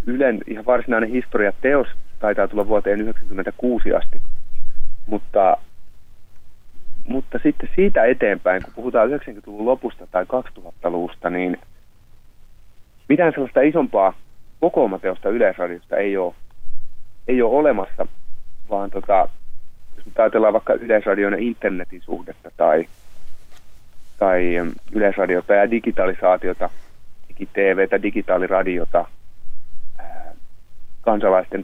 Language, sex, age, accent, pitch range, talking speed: Finnish, male, 30-49, native, 95-115 Hz, 90 wpm